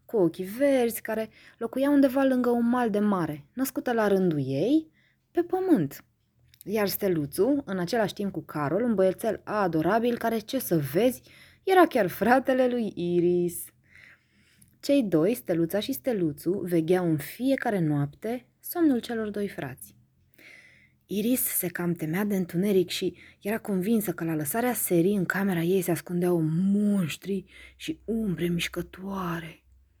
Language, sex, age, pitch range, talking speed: Romanian, female, 20-39, 170-225 Hz, 140 wpm